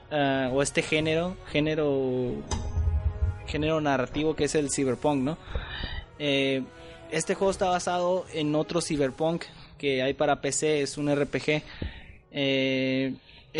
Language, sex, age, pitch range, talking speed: Spanish, male, 20-39, 135-155 Hz, 125 wpm